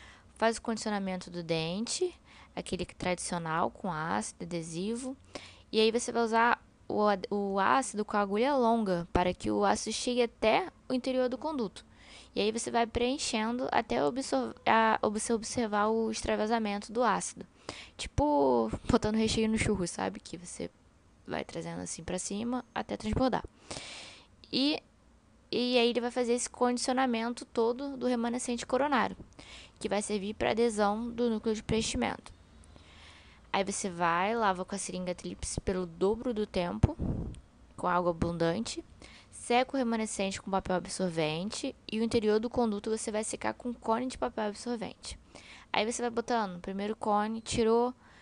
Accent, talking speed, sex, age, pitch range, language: Brazilian, 150 wpm, female, 10-29, 190-240 Hz, Portuguese